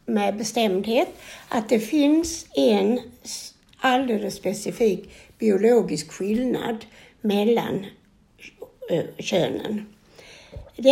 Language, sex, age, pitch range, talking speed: Swedish, female, 60-79, 200-255 Hz, 70 wpm